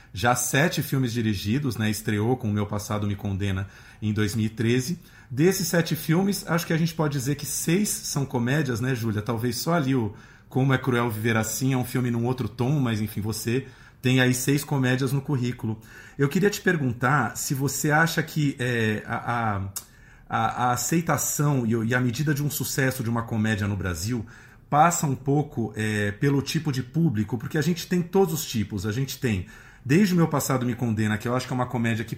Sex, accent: male, Brazilian